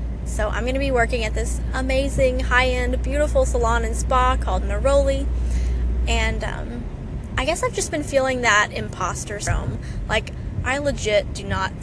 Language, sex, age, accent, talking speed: English, female, 10-29, American, 160 wpm